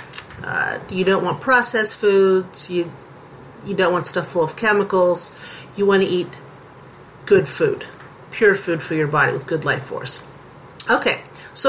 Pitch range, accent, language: 180-265 Hz, American, English